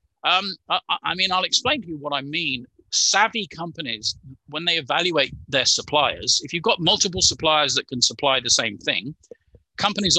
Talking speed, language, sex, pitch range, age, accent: 175 wpm, English, male, 130-175 Hz, 50-69, British